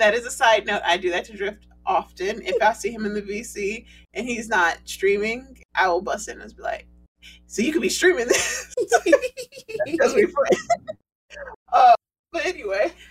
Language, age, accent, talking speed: English, 30-49, American, 180 wpm